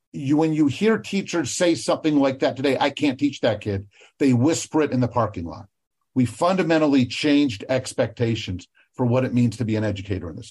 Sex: male